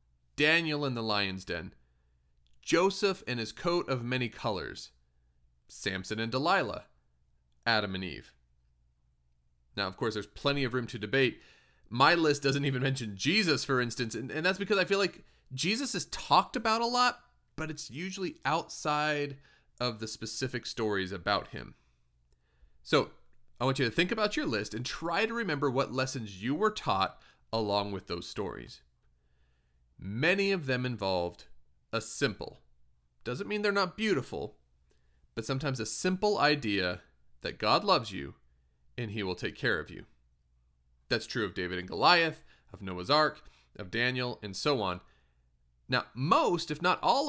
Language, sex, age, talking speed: English, male, 30-49, 160 wpm